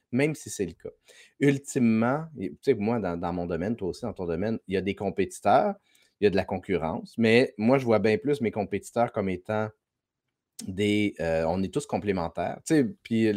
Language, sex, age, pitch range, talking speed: French, male, 30-49, 95-135 Hz, 195 wpm